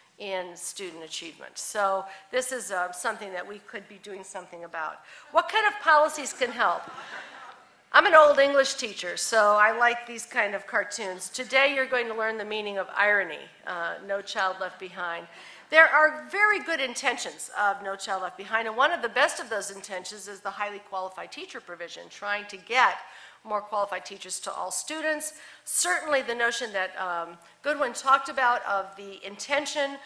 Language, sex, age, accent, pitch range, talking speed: English, female, 50-69, American, 200-265 Hz, 180 wpm